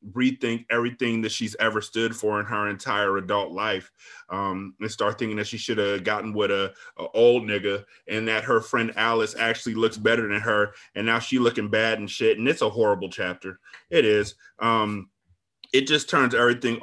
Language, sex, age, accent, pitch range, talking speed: English, male, 30-49, American, 100-115 Hz, 195 wpm